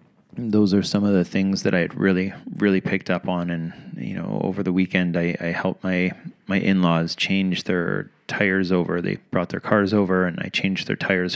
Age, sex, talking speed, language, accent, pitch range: 30-49, male, 210 wpm, English, American, 85-95 Hz